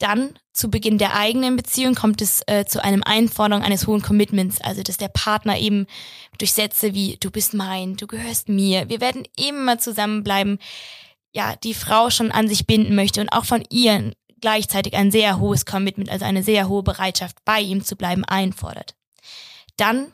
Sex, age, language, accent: female, 20-39, German, German